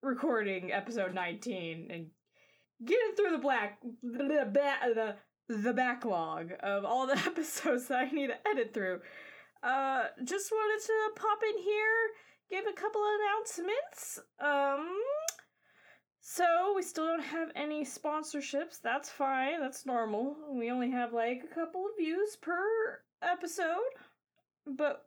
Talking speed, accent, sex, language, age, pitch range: 140 wpm, American, female, English, 20-39, 220-310 Hz